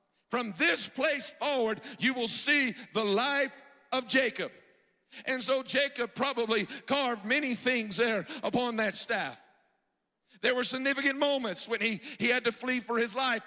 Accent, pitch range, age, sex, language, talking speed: American, 225-275 Hz, 50-69, male, English, 155 wpm